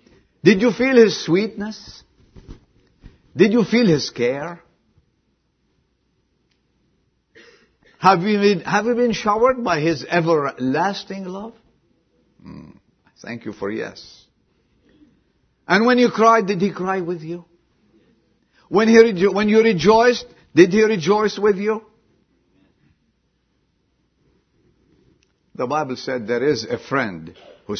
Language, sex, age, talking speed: English, male, 50-69, 115 wpm